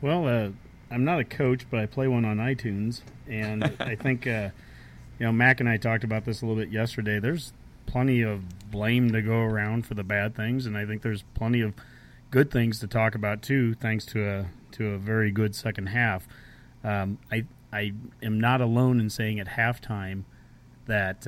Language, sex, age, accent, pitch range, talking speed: English, male, 30-49, American, 105-120 Hz, 200 wpm